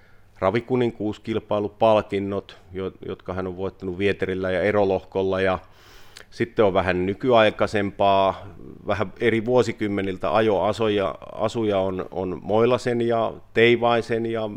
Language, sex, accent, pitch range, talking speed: Finnish, male, native, 95-110 Hz, 95 wpm